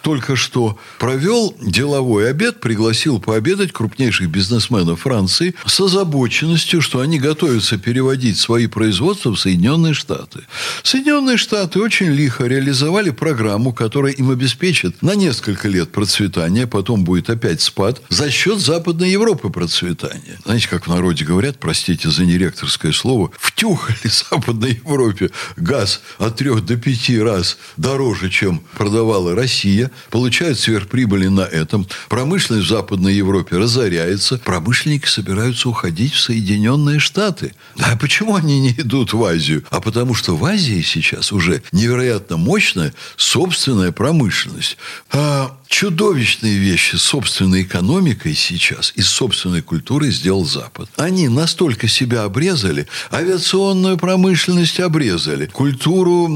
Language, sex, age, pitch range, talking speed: Russian, male, 60-79, 105-165 Hz, 125 wpm